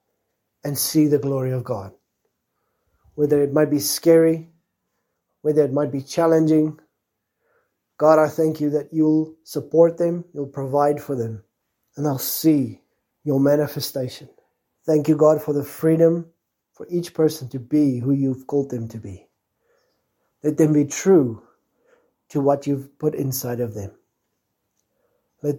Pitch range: 130-155 Hz